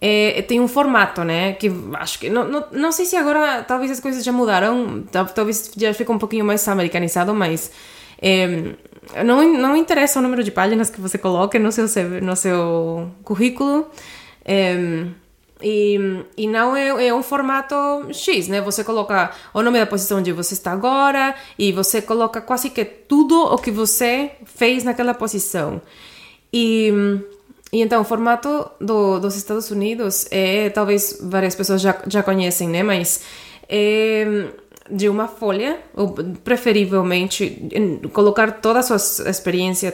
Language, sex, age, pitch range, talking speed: Portuguese, female, 20-39, 190-240 Hz, 155 wpm